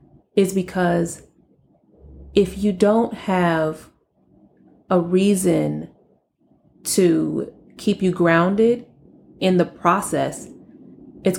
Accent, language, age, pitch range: American, English, 30-49, 175-205 Hz